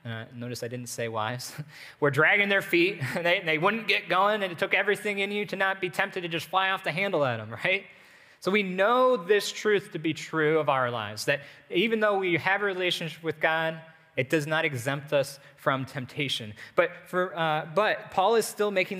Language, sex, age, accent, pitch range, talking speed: English, male, 20-39, American, 130-175 Hz, 225 wpm